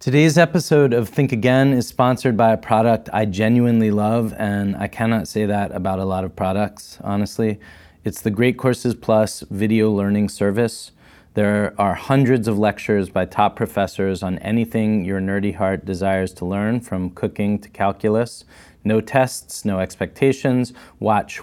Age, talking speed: 30-49, 160 wpm